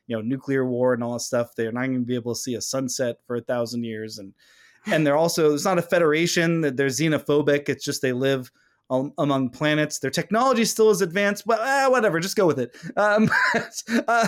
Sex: male